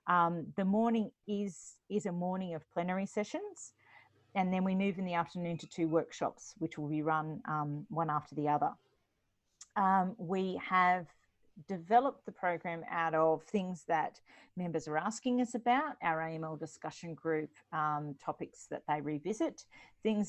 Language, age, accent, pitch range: English, 40-59, Australian, 150-185 Hz